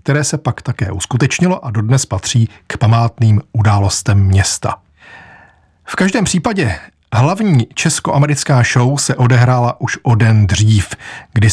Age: 40-59